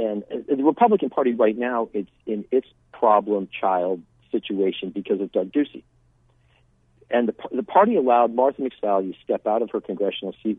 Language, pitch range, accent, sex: English, 100-125 Hz, American, male